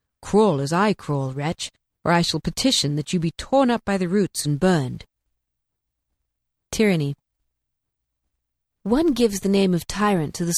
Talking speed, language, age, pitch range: 160 wpm, English, 40-59, 150-205 Hz